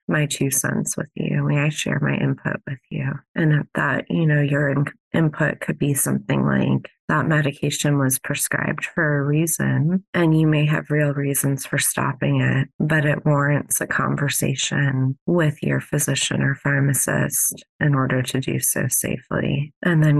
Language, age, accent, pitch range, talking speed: English, 30-49, American, 130-150 Hz, 170 wpm